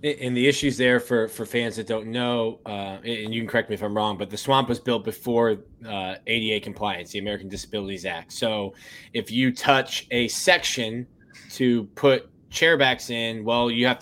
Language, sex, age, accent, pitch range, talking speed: English, male, 20-39, American, 110-130 Hz, 195 wpm